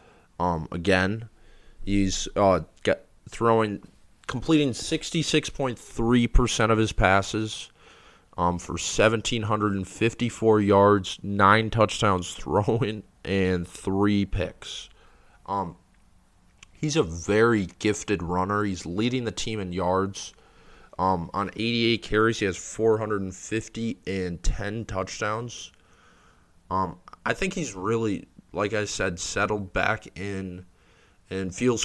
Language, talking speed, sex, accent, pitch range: English, 100 wpm, male, American, 95-110 Hz